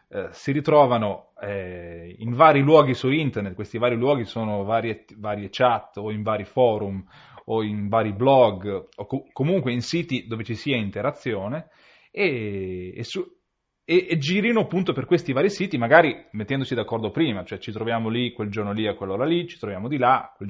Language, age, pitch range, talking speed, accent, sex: Italian, 30-49, 105-145 Hz, 185 wpm, native, male